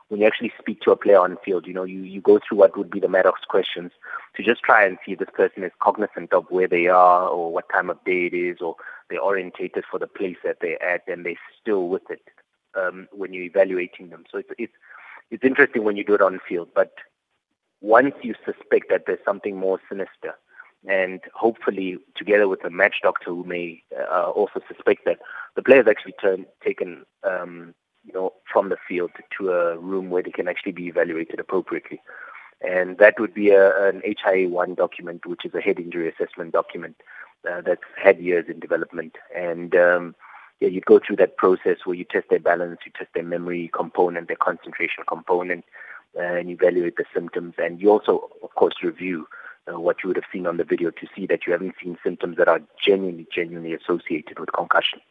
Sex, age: male, 30-49